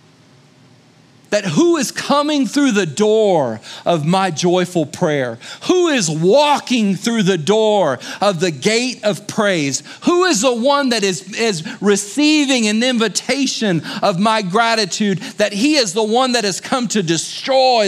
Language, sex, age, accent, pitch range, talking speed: English, male, 40-59, American, 140-225 Hz, 150 wpm